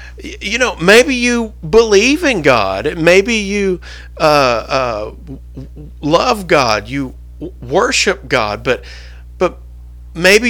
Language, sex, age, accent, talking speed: English, male, 50-69, American, 110 wpm